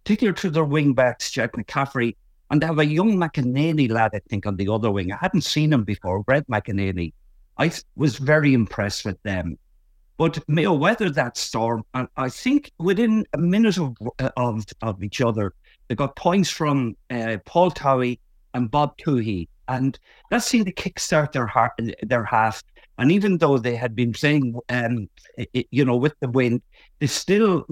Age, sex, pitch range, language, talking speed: 50-69, male, 110-155 Hz, English, 180 wpm